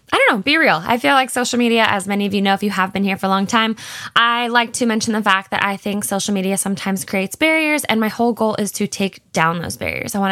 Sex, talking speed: female, 290 wpm